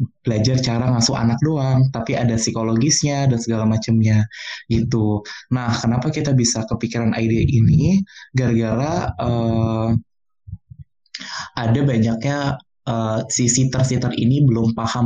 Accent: native